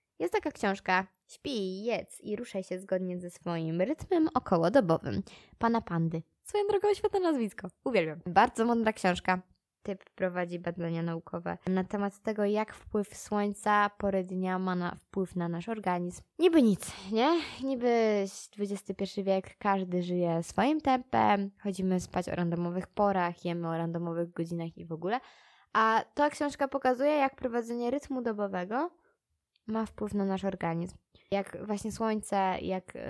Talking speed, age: 145 wpm, 20-39